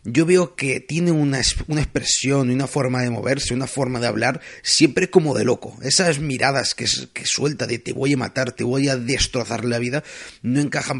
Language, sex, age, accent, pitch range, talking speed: Spanish, male, 30-49, Spanish, 115-135 Hz, 200 wpm